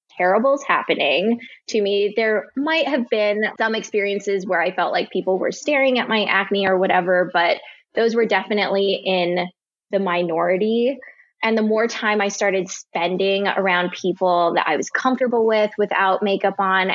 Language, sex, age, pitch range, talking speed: English, female, 10-29, 185-215 Hz, 165 wpm